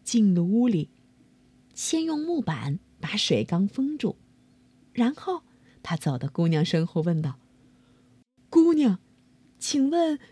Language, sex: Chinese, female